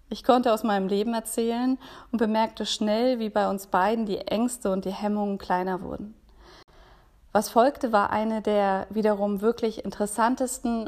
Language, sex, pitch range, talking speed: German, female, 200-230 Hz, 155 wpm